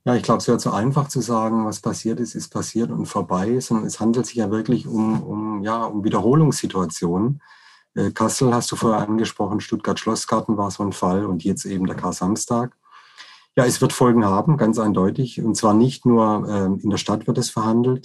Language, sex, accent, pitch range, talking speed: German, male, German, 100-120 Hz, 205 wpm